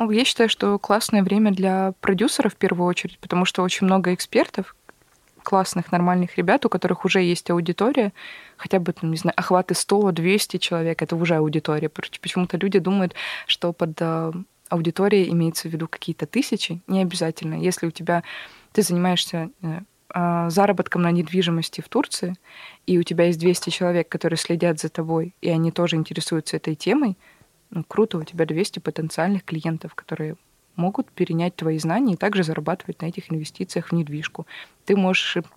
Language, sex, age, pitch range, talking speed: Russian, female, 20-39, 165-190 Hz, 160 wpm